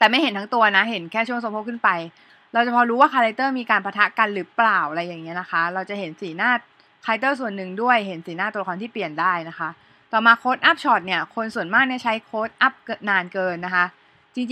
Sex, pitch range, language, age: female, 190-240 Hz, Thai, 20-39